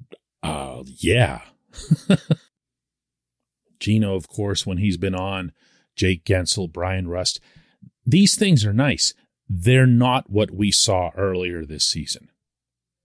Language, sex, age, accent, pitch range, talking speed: English, male, 40-59, American, 95-150 Hz, 115 wpm